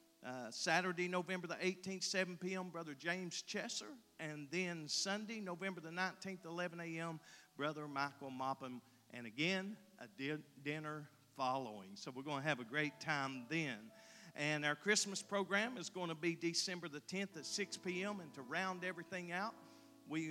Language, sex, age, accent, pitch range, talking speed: English, male, 50-69, American, 145-185 Hz, 165 wpm